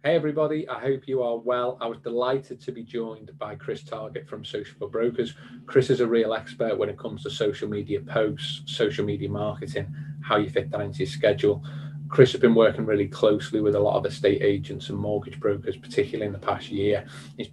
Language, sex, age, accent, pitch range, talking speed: English, male, 30-49, British, 105-135 Hz, 210 wpm